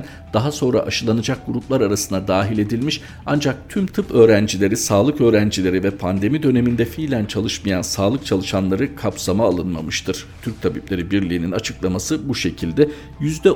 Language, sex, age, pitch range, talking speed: Turkish, male, 50-69, 100-140 Hz, 125 wpm